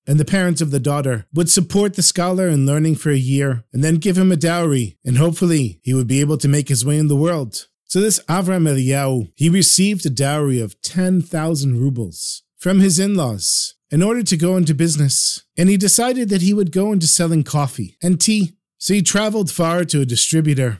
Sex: male